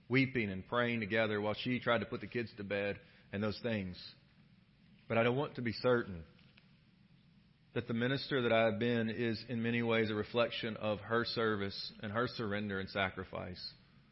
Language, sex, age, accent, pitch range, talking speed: English, male, 40-59, American, 110-140 Hz, 185 wpm